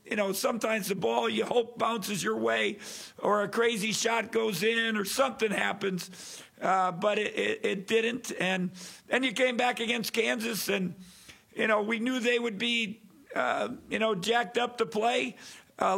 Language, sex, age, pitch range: English, male, 50-69, 210-240 Hz